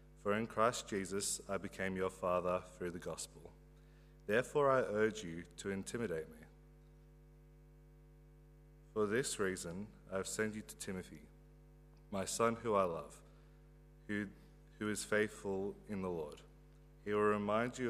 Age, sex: 30-49, male